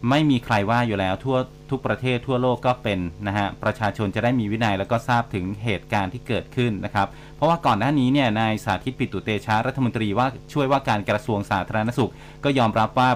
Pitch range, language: 105-135 Hz, Thai